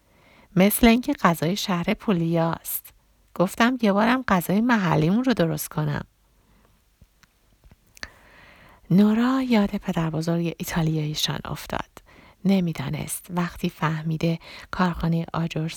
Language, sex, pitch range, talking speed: Persian, female, 160-195 Hz, 100 wpm